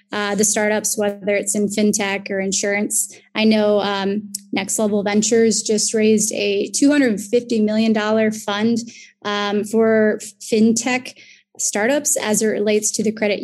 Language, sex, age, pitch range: English, female, 20-39, 205-230 Hz